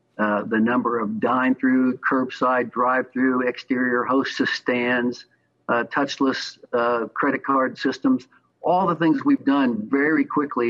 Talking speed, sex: 130 wpm, male